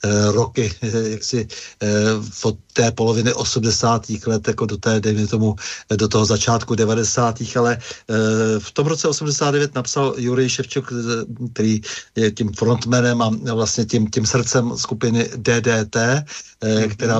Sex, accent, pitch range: male, native, 110-130 Hz